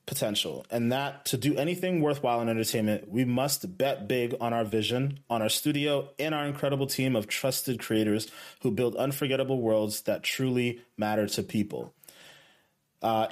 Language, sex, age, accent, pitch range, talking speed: English, male, 30-49, American, 115-140 Hz, 160 wpm